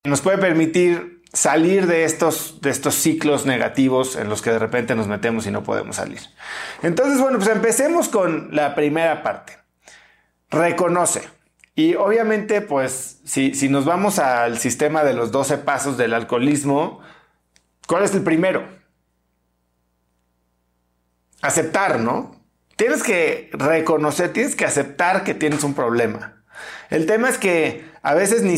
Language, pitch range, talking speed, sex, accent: Spanish, 130-175 Hz, 145 wpm, male, Mexican